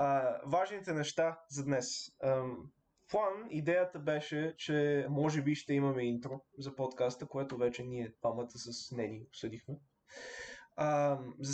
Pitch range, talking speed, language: 130-155 Hz, 135 wpm, Bulgarian